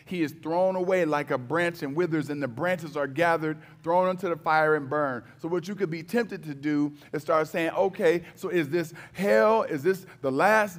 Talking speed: 220 wpm